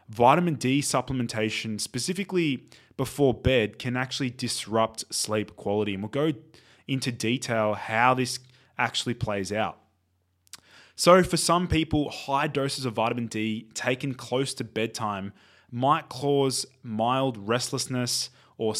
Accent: Australian